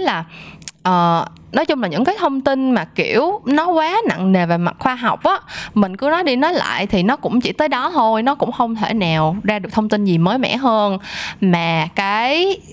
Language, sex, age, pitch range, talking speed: Vietnamese, female, 20-39, 180-255 Hz, 220 wpm